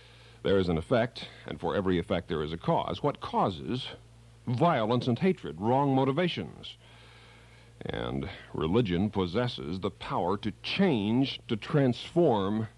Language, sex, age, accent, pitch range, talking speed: English, male, 60-79, American, 105-130 Hz, 130 wpm